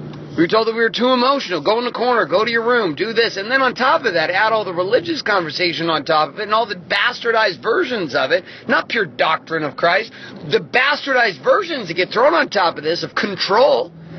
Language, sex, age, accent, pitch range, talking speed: English, male, 30-49, American, 175-245 Hz, 240 wpm